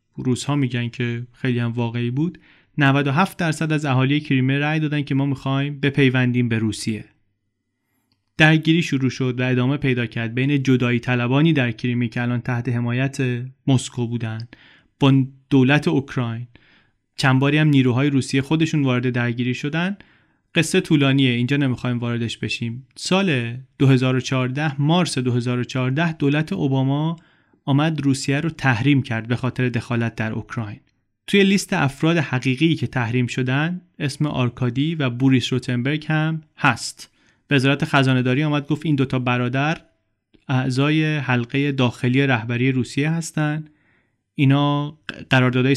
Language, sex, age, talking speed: Persian, male, 30-49, 135 wpm